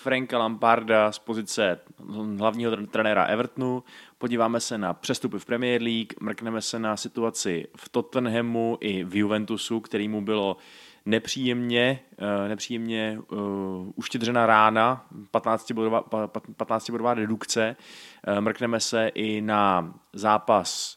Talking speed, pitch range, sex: 105 wpm, 105-115 Hz, male